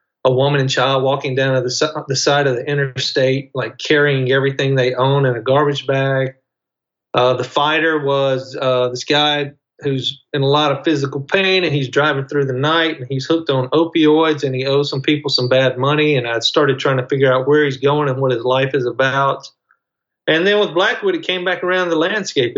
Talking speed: 215 wpm